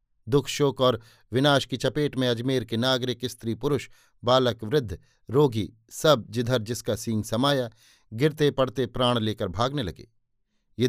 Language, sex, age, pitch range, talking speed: Hindi, male, 50-69, 120-140 Hz, 150 wpm